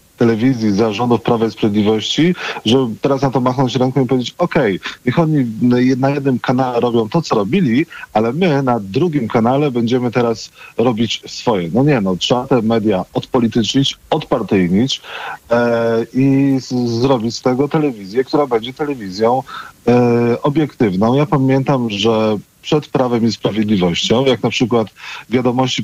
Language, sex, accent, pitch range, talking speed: Polish, male, native, 115-135 Hz, 145 wpm